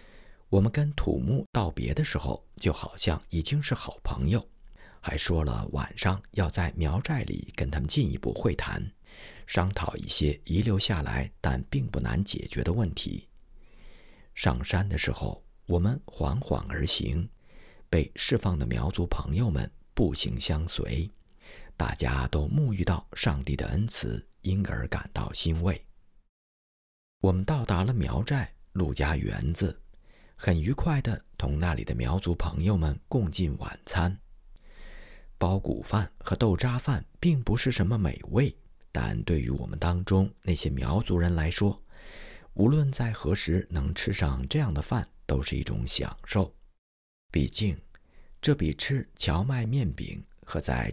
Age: 50-69